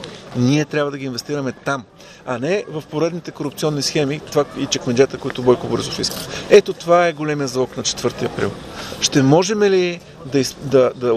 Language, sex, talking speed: Bulgarian, male, 170 wpm